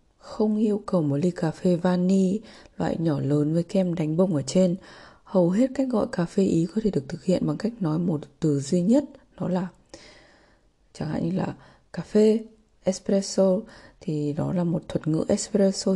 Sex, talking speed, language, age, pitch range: female, 195 wpm, Vietnamese, 20-39, 160-210 Hz